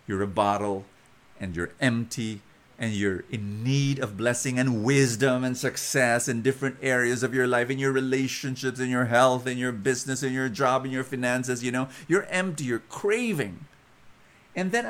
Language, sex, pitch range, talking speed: English, male, 125-200 Hz, 180 wpm